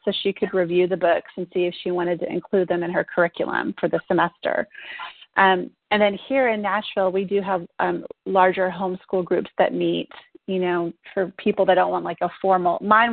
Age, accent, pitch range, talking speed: 30-49, American, 175-210 Hz, 210 wpm